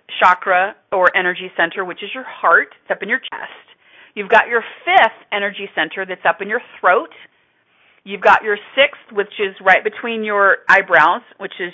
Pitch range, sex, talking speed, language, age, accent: 180-230 Hz, female, 185 wpm, English, 40-59, American